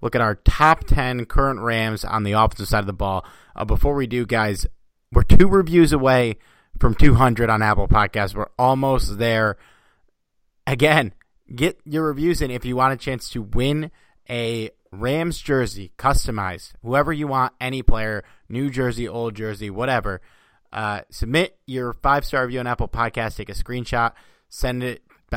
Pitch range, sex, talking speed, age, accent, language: 110-135 Hz, male, 165 wpm, 30-49, American, English